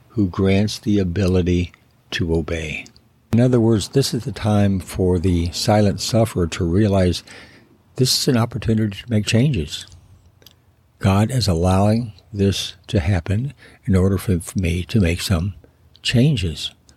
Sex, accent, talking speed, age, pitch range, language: male, American, 140 wpm, 60-79, 90-115 Hz, English